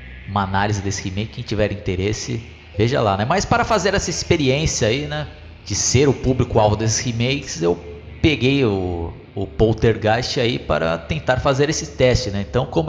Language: Portuguese